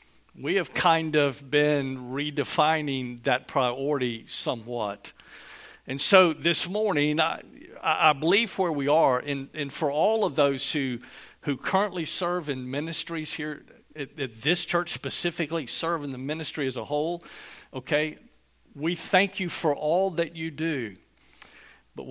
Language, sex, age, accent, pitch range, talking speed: English, male, 50-69, American, 135-170 Hz, 145 wpm